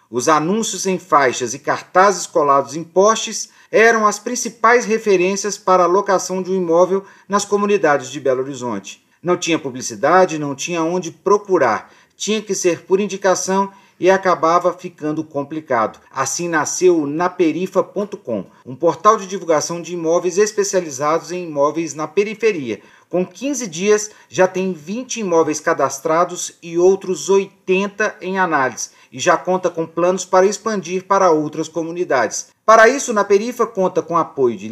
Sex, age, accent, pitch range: male, 40-59, Brazilian, 165-200 Hz